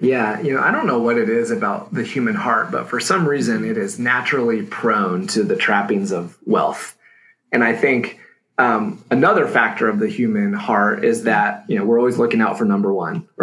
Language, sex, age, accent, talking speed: English, male, 30-49, American, 210 wpm